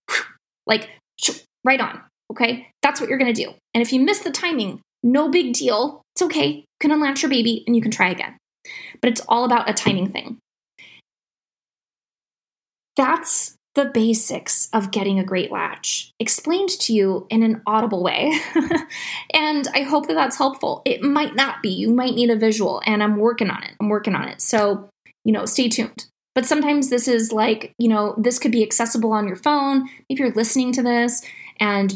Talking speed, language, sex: 190 wpm, English, female